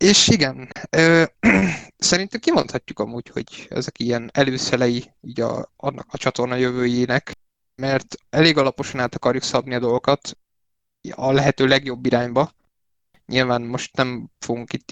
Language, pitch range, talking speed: Hungarian, 120-140 Hz, 135 wpm